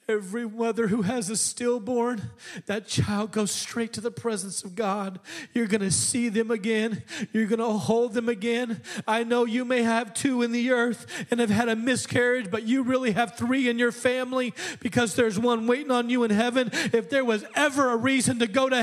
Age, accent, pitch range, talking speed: 40-59, American, 230-310 Hz, 210 wpm